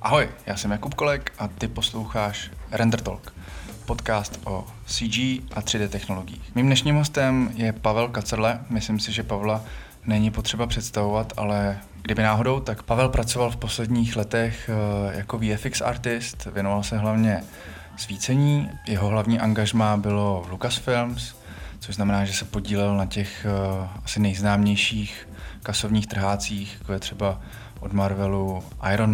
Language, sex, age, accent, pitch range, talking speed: Czech, male, 20-39, native, 100-115 Hz, 135 wpm